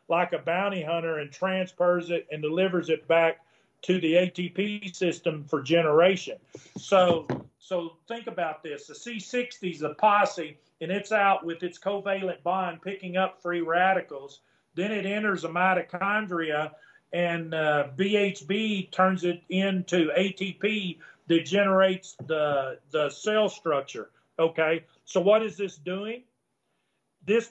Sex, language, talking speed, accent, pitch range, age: male, English, 135 wpm, American, 165-200 Hz, 40-59